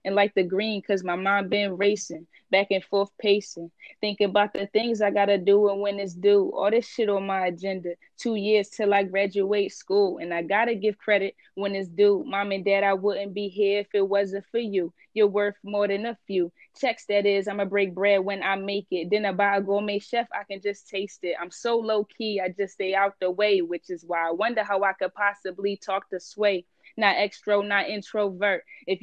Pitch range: 190-205 Hz